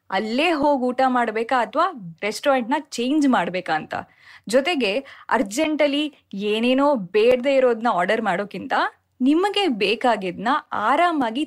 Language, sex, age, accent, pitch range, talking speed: Kannada, female, 20-39, native, 210-275 Hz, 100 wpm